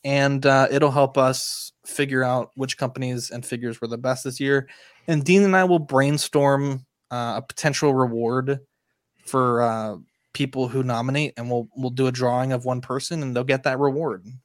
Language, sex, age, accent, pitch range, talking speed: English, male, 20-39, American, 125-140 Hz, 185 wpm